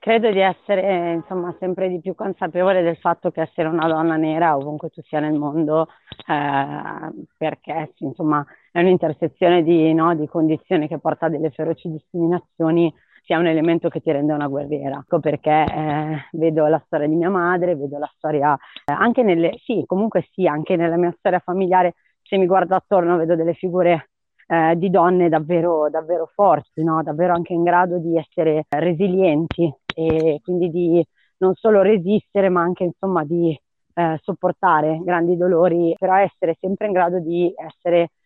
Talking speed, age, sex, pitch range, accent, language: 170 wpm, 30-49, female, 160-180 Hz, native, Italian